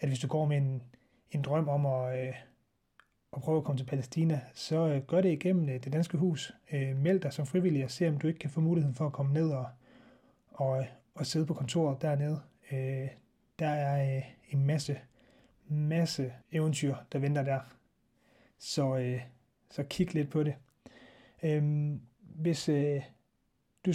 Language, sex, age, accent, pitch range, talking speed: Danish, male, 30-49, native, 130-155 Hz, 160 wpm